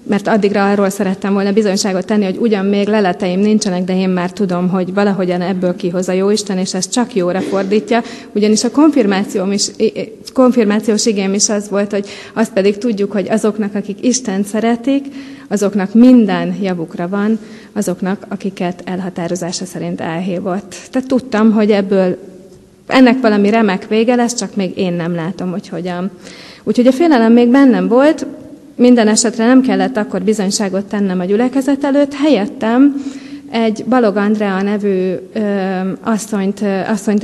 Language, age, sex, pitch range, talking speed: Hungarian, 30-49, female, 190-230 Hz, 145 wpm